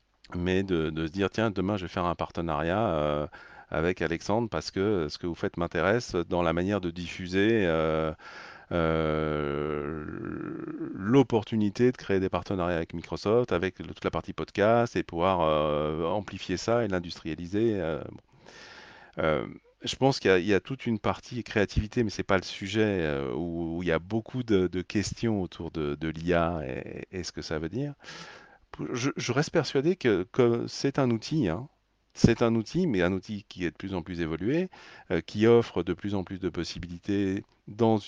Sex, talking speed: male, 190 wpm